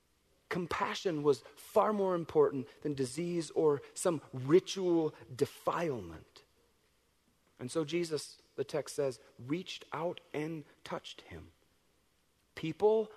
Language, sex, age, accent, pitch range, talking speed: English, male, 40-59, American, 140-200 Hz, 105 wpm